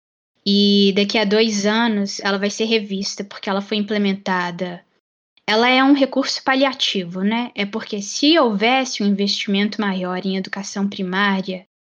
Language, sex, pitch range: Portuguese, female, 195-225 Hz